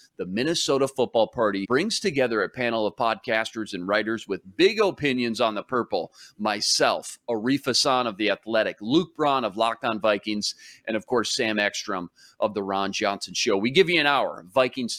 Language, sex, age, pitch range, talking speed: English, male, 40-59, 115-155 Hz, 185 wpm